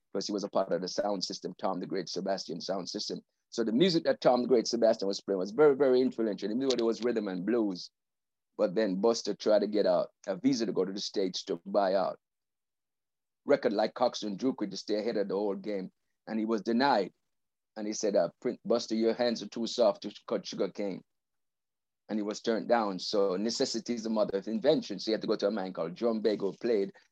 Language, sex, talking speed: English, male, 235 wpm